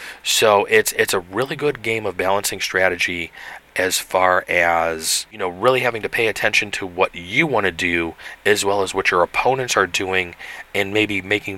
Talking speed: 190 wpm